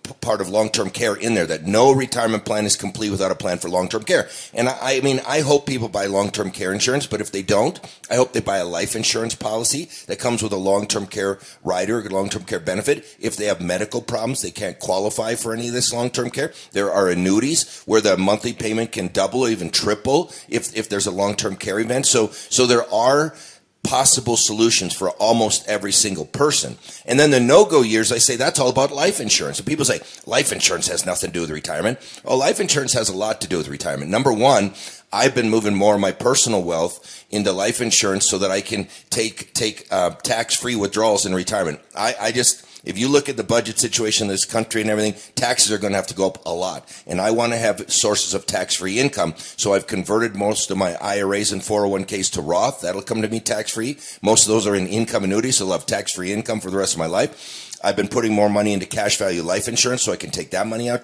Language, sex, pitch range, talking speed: English, male, 100-115 Hz, 235 wpm